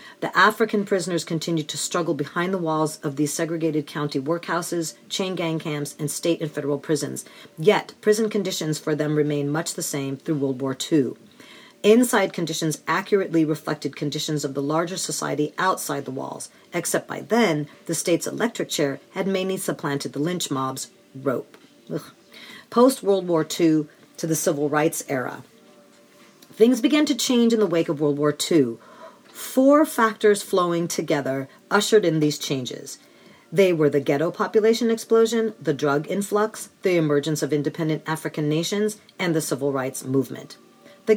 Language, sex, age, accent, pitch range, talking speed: English, female, 40-59, American, 150-205 Hz, 160 wpm